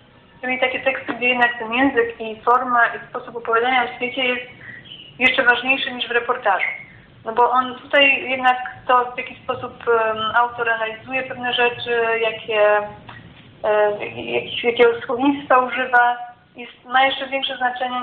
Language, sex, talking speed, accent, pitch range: Polish, female, 135 wpm, native, 220-260 Hz